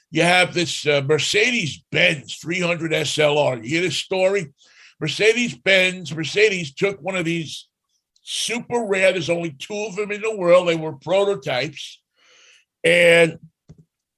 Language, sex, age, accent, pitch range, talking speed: English, male, 60-79, American, 150-195 Hz, 140 wpm